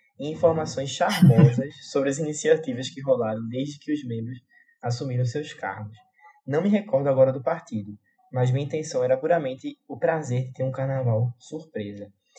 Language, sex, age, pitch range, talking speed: Portuguese, male, 20-39, 125-160 Hz, 155 wpm